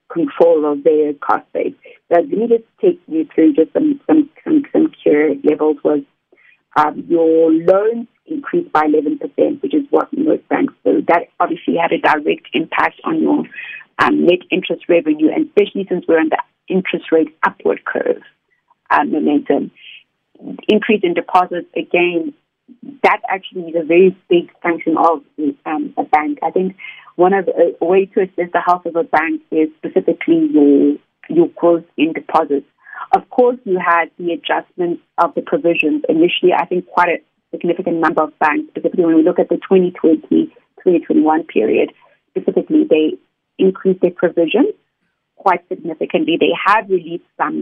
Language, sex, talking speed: English, female, 160 wpm